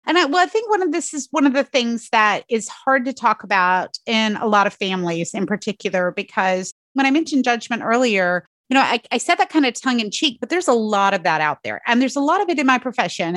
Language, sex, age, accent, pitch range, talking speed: English, female, 30-49, American, 185-260 Hz, 270 wpm